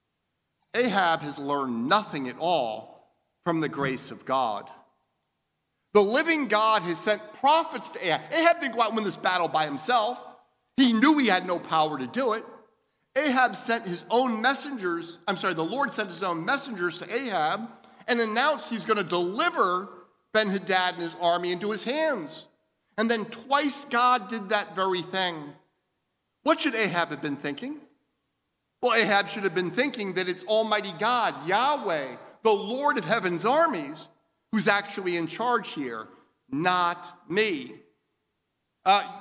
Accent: American